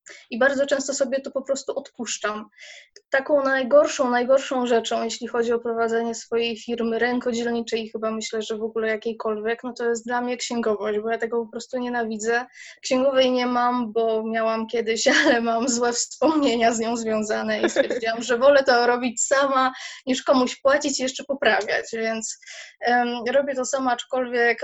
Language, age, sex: Polish, 20-39, female